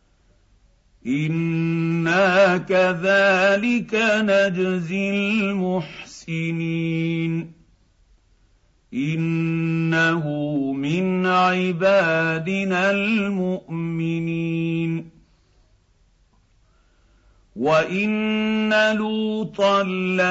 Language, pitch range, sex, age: Arabic, 165-195 Hz, male, 50-69